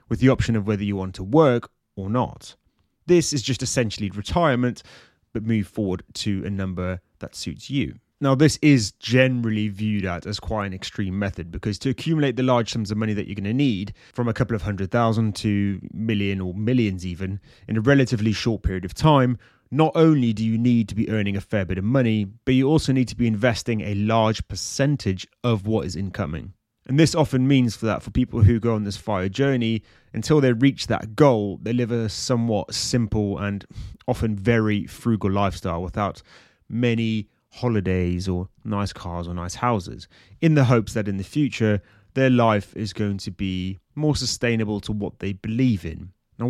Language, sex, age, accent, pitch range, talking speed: English, male, 30-49, British, 100-125 Hz, 195 wpm